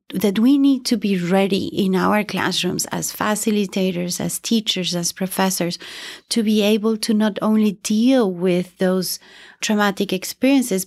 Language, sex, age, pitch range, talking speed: English, female, 30-49, 190-225 Hz, 145 wpm